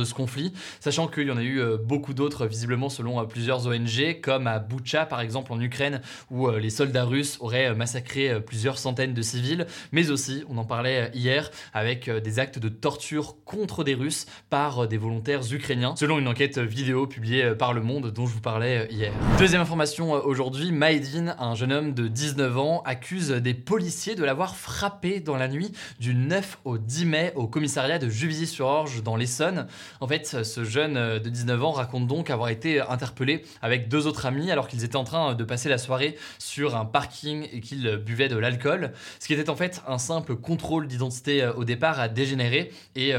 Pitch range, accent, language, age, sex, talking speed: 120-150 Hz, French, French, 20-39, male, 195 wpm